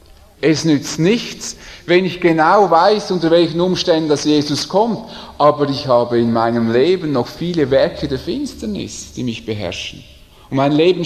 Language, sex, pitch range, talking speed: English, male, 115-165 Hz, 165 wpm